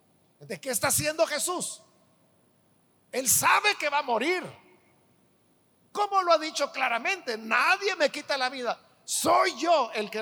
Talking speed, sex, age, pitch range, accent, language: 145 wpm, male, 50-69, 215-315 Hz, Mexican, Spanish